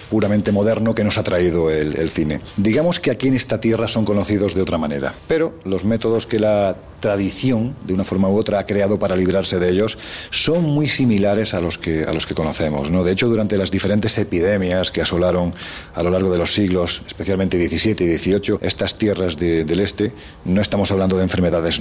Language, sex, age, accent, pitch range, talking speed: Spanish, male, 40-59, Spanish, 85-105 Hz, 210 wpm